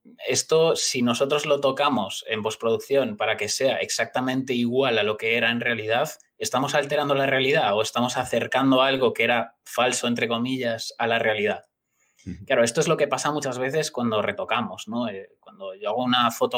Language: Spanish